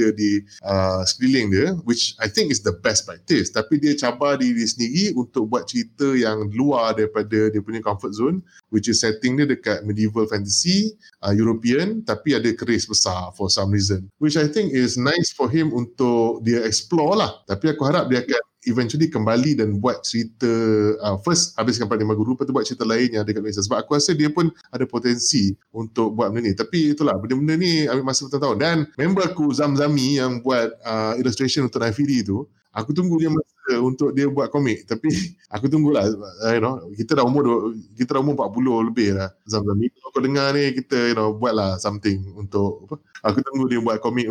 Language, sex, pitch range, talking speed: Malay, male, 110-145 Hz, 195 wpm